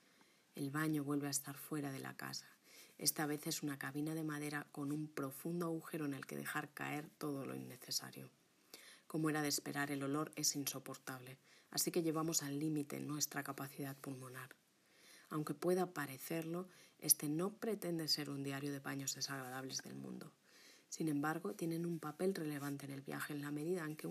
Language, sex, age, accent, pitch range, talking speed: Spanish, female, 30-49, Spanish, 140-160 Hz, 180 wpm